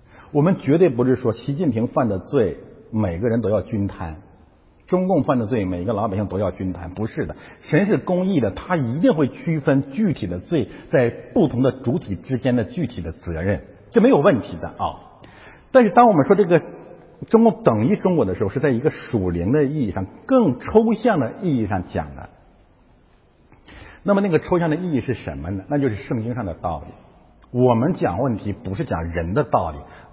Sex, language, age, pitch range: male, Chinese, 50-69, 90-140 Hz